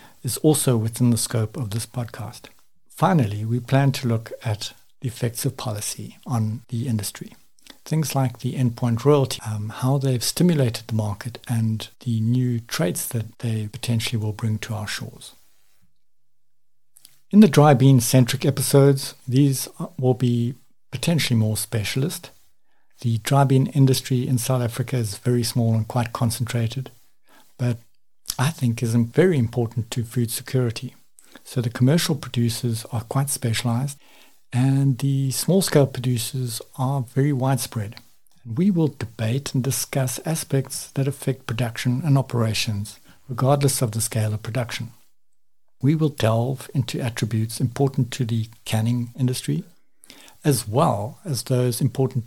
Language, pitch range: English, 115-135 Hz